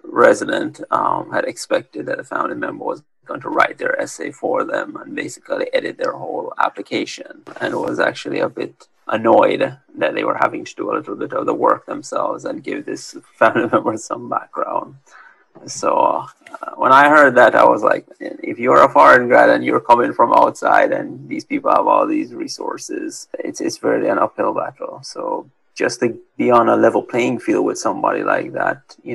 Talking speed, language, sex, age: 195 wpm, English, male, 30-49